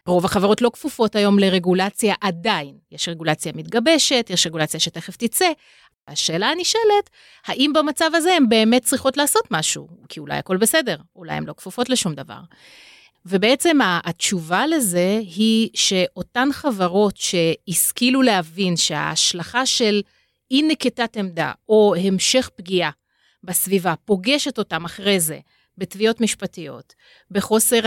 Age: 30-49